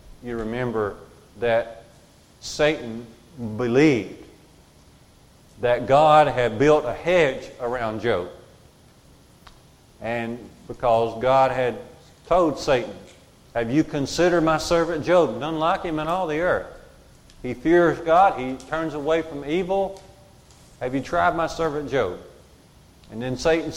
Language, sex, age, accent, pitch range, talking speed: English, male, 40-59, American, 125-170 Hz, 125 wpm